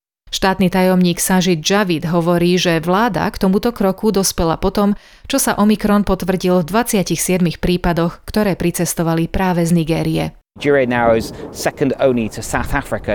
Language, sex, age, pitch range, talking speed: Slovak, male, 30-49, 120-195 Hz, 145 wpm